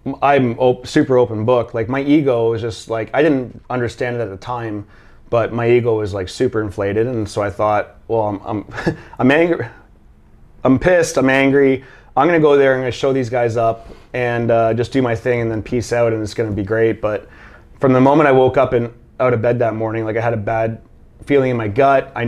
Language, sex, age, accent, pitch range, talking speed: English, male, 30-49, American, 110-125 Hz, 230 wpm